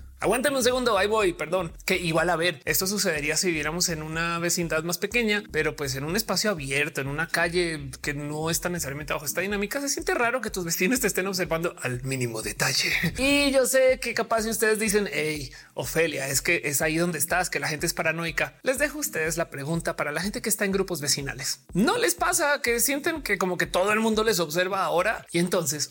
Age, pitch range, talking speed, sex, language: 30-49, 160-225 Hz, 225 wpm, male, Spanish